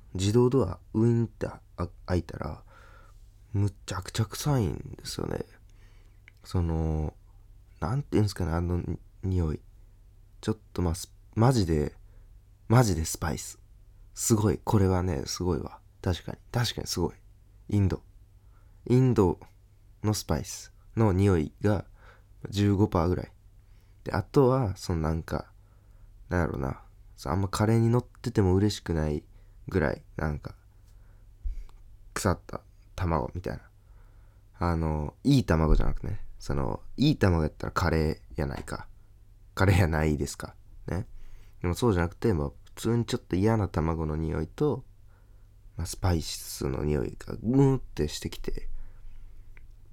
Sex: male